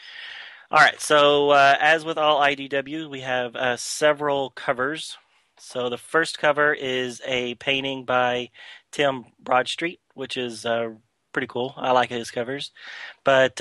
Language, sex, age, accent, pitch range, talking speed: English, male, 30-49, American, 120-140 Hz, 145 wpm